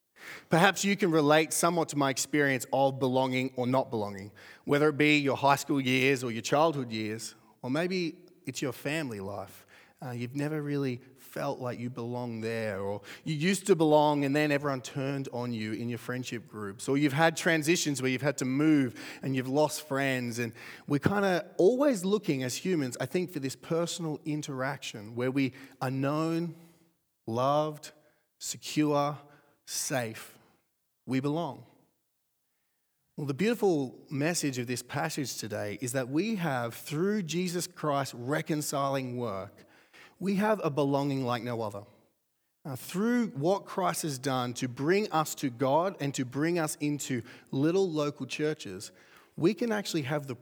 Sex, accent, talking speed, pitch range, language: male, Australian, 165 wpm, 125-155 Hz, English